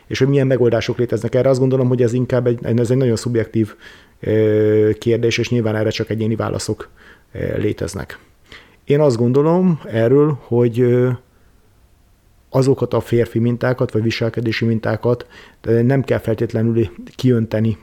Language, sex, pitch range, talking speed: Hungarian, male, 110-125 Hz, 135 wpm